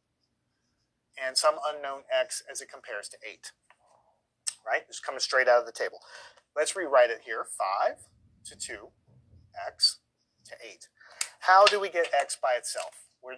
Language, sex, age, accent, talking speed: English, male, 30-49, American, 155 wpm